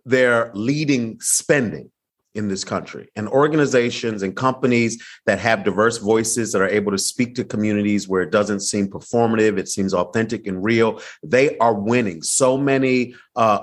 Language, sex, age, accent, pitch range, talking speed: English, male, 30-49, American, 110-140 Hz, 165 wpm